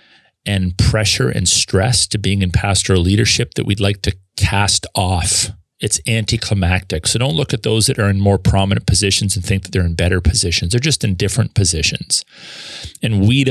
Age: 30-49